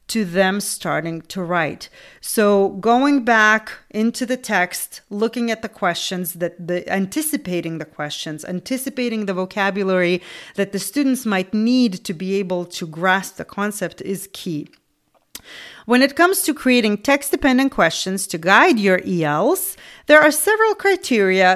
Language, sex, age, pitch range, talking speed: English, female, 30-49, 185-240 Hz, 145 wpm